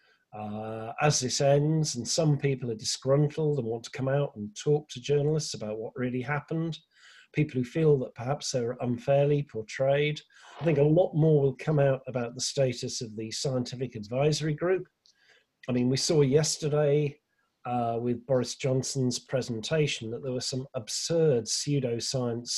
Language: English